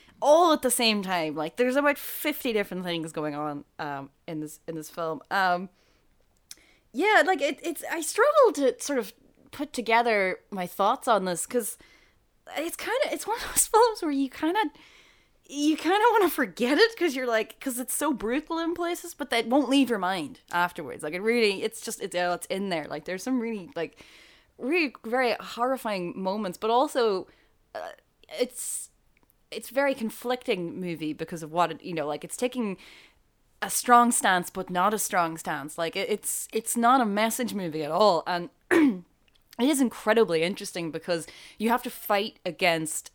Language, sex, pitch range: English, female, 175-275 Hz